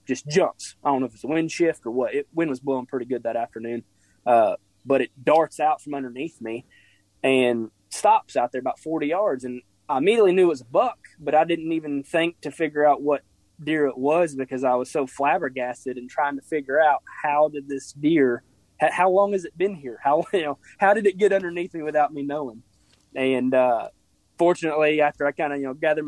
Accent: American